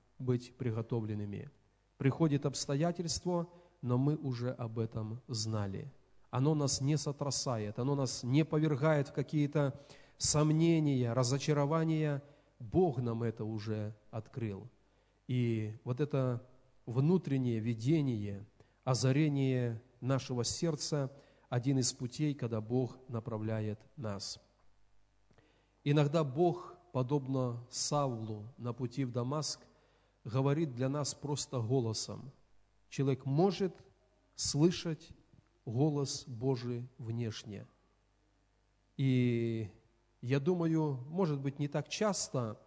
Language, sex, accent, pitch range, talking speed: Russian, male, native, 120-145 Hz, 95 wpm